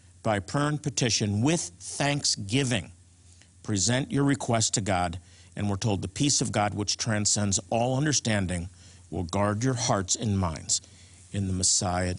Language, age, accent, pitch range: English, 50-69, American, 100-140 Hz